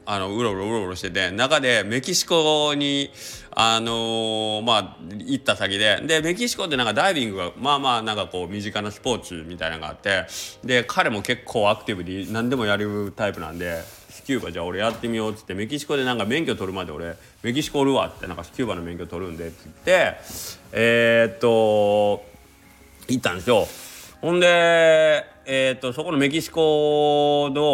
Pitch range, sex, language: 100-150 Hz, male, Japanese